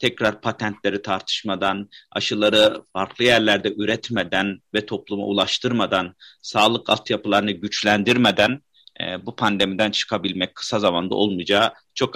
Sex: male